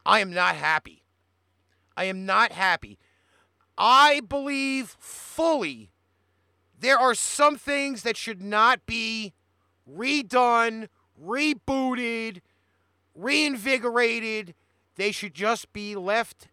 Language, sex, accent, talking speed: English, male, American, 100 wpm